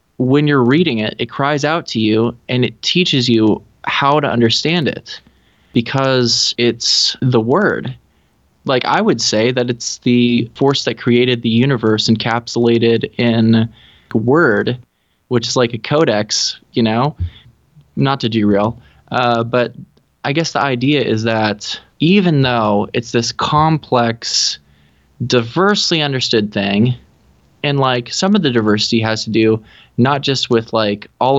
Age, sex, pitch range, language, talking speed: 20-39, male, 110-140 Hz, English, 145 wpm